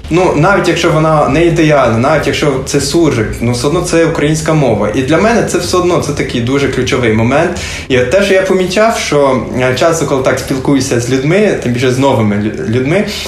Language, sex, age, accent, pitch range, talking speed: Ukrainian, male, 20-39, native, 135-180 Hz, 200 wpm